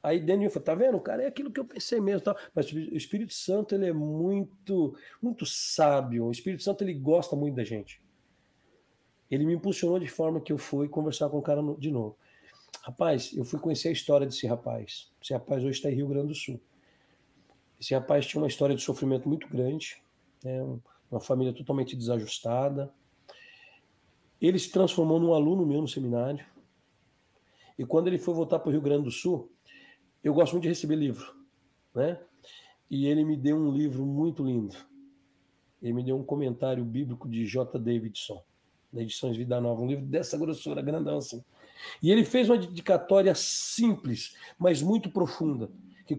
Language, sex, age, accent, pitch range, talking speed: Portuguese, male, 50-69, Brazilian, 130-185 Hz, 180 wpm